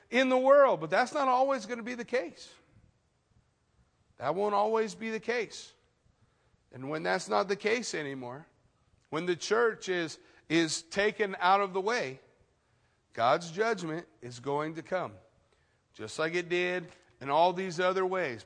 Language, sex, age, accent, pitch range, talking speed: English, male, 40-59, American, 175-225 Hz, 165 wpm